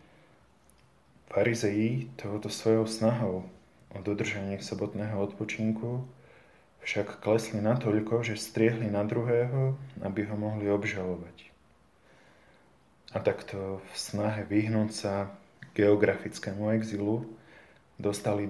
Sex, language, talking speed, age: male, Slovak, 90 wpm, 20-39